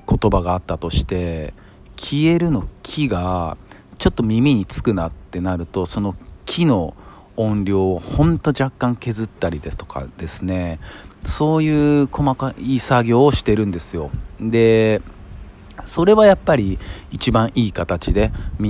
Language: Japanese